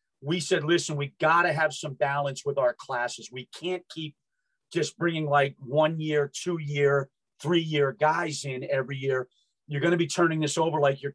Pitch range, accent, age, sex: 135-175 Hz, American, 40-59, male